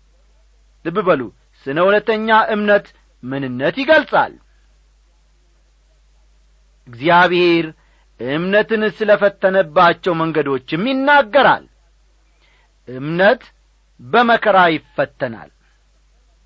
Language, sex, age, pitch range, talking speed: Amharic, male, 40-59, 165-220 Hz, 55 wpm